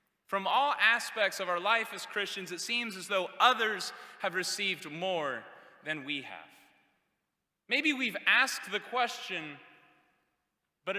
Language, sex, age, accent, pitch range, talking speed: English, male, 30-49, American, 155-205 Hz, 135 wpm